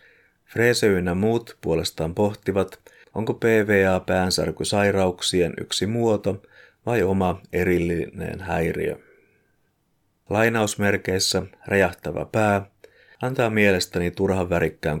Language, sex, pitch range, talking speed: Finnish, male, 90-105 Hz, 80 wpm